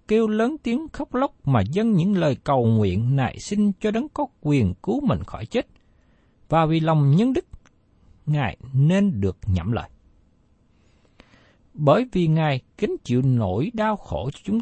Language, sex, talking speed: Vietnamese, male, 170 wpm